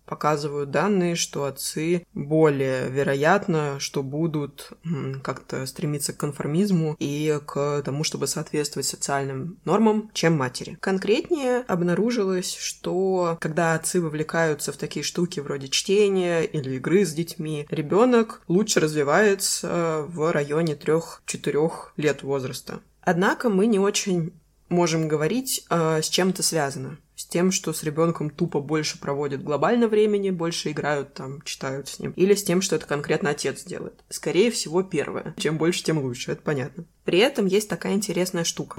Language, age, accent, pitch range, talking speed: Russian, 20-39, native, 150-185 Hz, 145 wpm